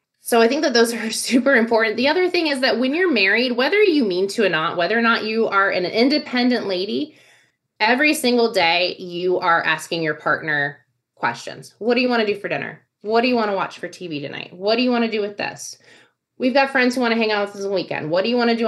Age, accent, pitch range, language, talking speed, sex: 20-39, American, 160-235 Hz, English, 265 wpm, female